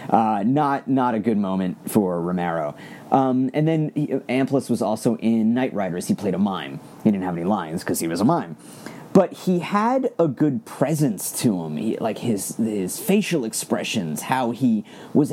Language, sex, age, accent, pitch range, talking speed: English, male, 30-49, American, 110-155 Hz, 190 wpm